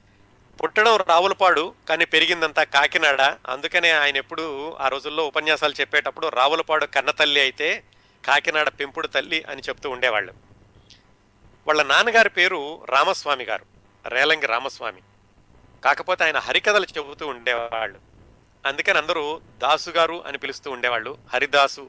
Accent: native